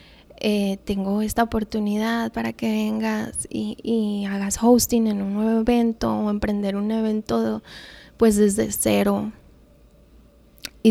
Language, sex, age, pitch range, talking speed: Spanish, female, 20-39, 200-230 Hz, 125 wpm